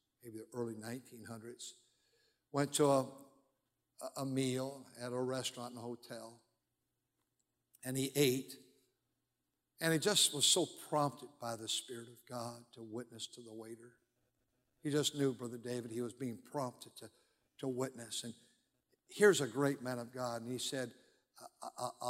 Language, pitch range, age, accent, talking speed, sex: English, 120-140 Hz, 60-79, American, 155 wpm, male